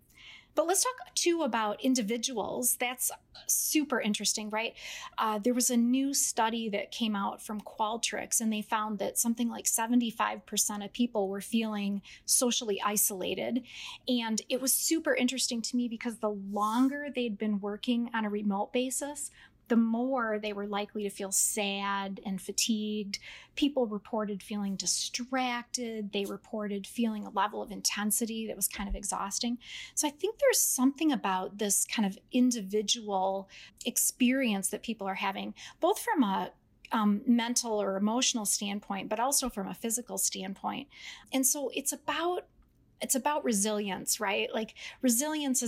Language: English